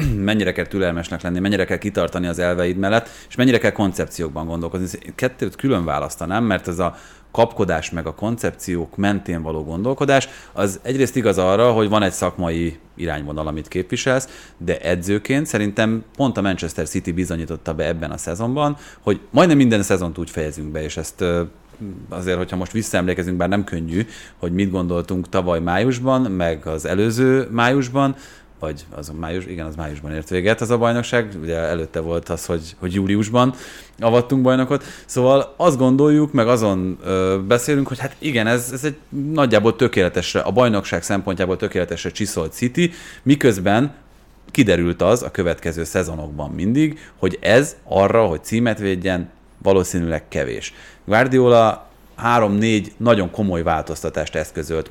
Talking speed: 150 wpm